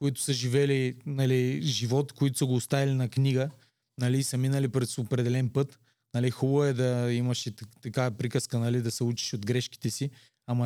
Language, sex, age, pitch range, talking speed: Bulgarian, male, 20-39, 120-145 Hz, 185 wpm